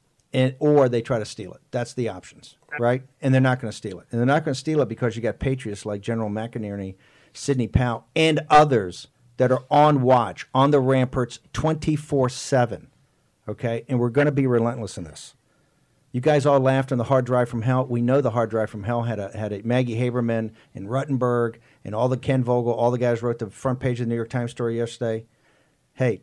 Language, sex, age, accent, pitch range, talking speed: English, male, 50-69, American, 115-135 Hz, 225 wpm